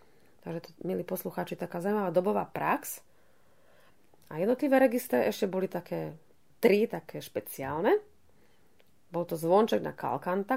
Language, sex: Slovak, female